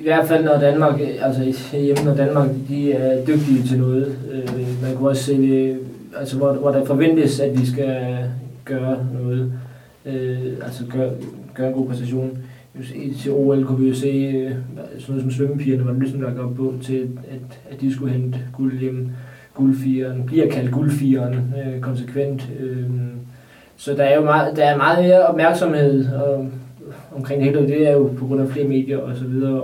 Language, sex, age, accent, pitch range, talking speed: Danish, male, 20-39, native, 130-140 Hz, 180 wpm